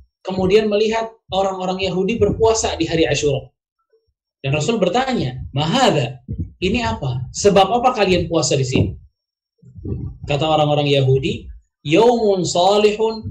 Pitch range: 135-190 Hz